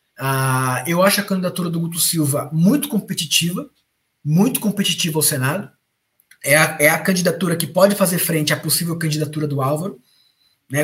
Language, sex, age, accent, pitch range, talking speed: Portuguese, male, 20-39, Brazilian, 140-185 Hz, 160 wpm